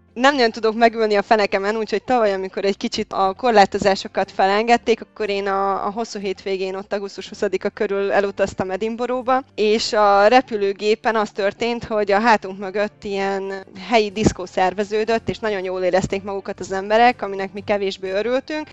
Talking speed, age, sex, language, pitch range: 160 wpm, 20-39, female, Hungarian, 190-225 Hz